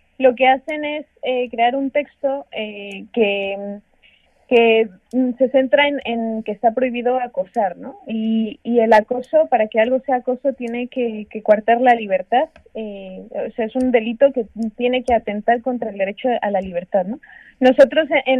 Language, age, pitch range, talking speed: Spanish, 20-39, 225-270 Hz, 175 wpm